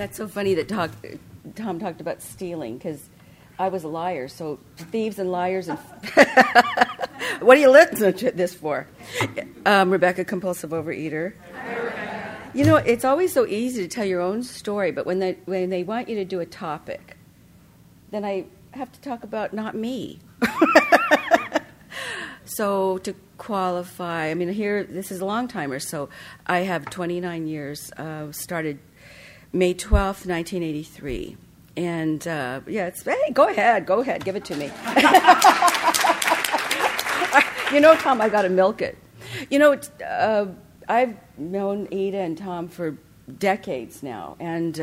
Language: English